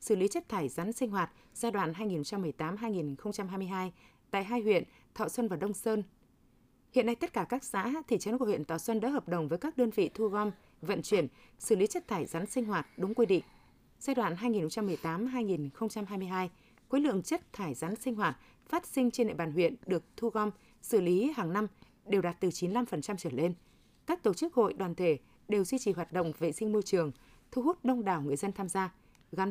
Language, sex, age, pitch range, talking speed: Vietnamese, female, 20-39, 180-240 Hz, 210 wpm